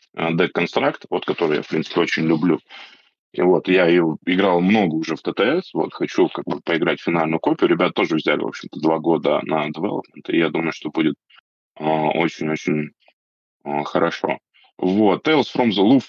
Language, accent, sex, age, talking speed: Russian, native, male, 20-39, 175 wpm